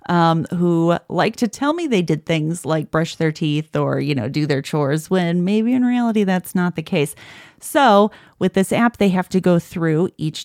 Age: 30-49